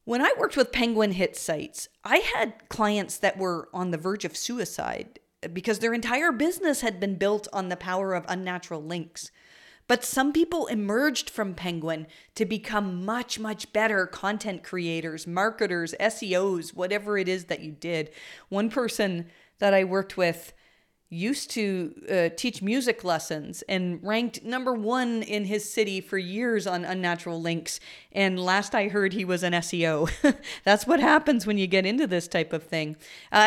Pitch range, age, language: 180-235 Hz, 40-59, English